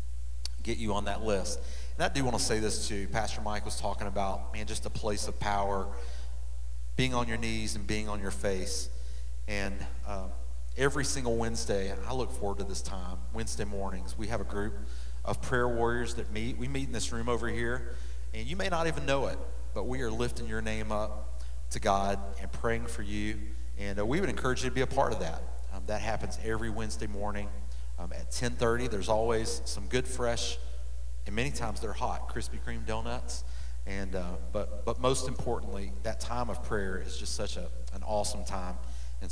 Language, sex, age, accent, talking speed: English, male, 40-59, American, 205 wpm